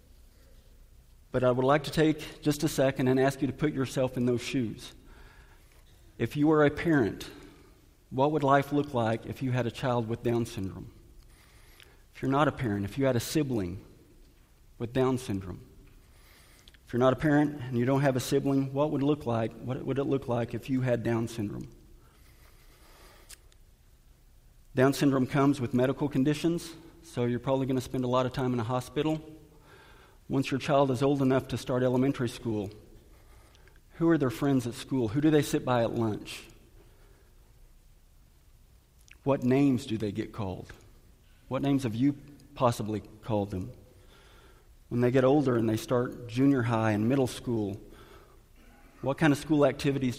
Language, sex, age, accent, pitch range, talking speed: English, male, 50-69, American, 115-140 Hz, 175 wpm